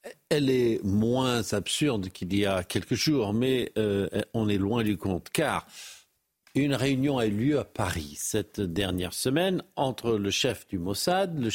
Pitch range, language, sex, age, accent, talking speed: 100-125 Hz, French, male, 50-69, French, 170 wpm